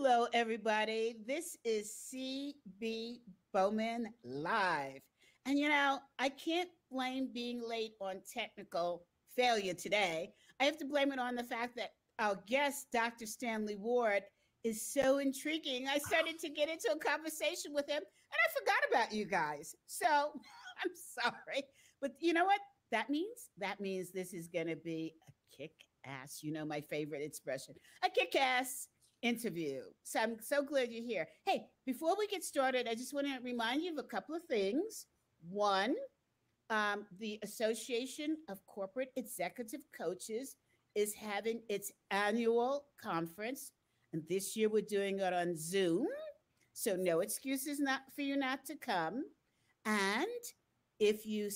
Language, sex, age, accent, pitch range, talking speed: English, female, 50-69, American, 195-275 Hz, 155 wpm